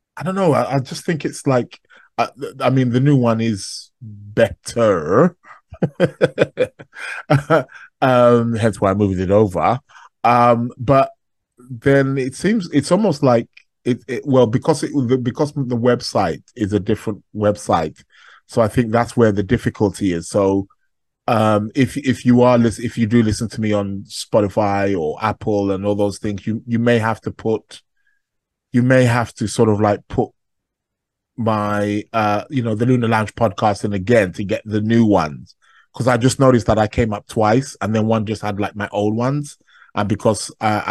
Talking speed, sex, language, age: 180 wpm, male, English, 20-39